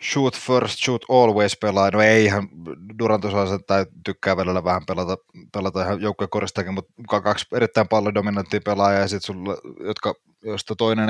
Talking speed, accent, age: 130 wpm, native, 20-39